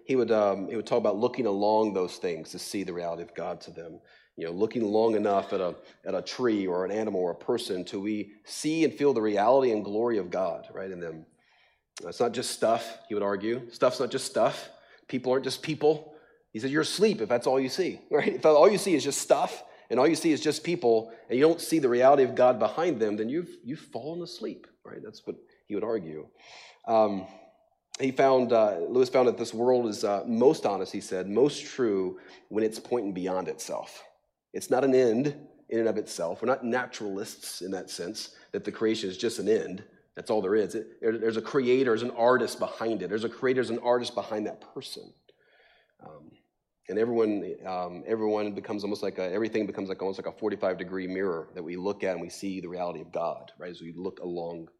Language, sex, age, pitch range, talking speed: English, male, 30-49, 100-130 Hz, 225 wpm